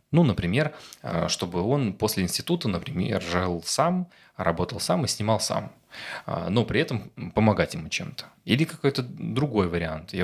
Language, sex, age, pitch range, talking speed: Russian, male, 20-39, 100-140 Hz, 145 wpm